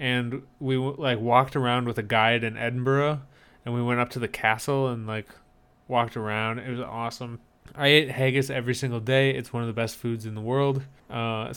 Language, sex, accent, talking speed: English, male, American, 205 wpm